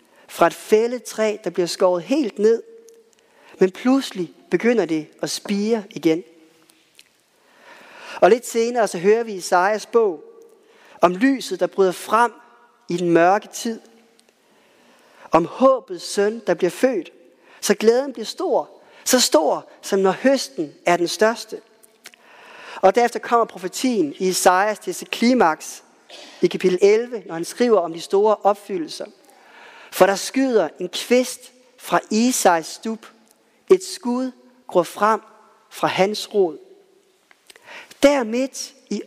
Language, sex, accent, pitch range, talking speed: Danish, male, native, 185-265 Hz, 135 wpm